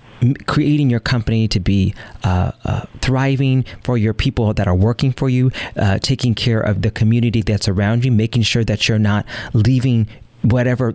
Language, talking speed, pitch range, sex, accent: English, 175 wpm, 110-135 Hz, male, American